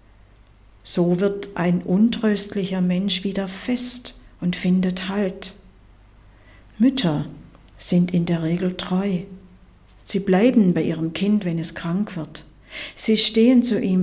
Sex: female